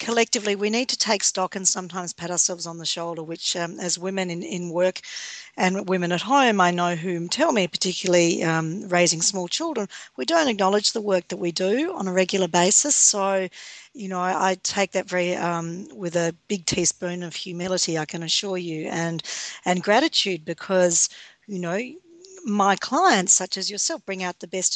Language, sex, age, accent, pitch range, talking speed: English, female, 50-69, Australian, 180-215 Hz, 195 wpm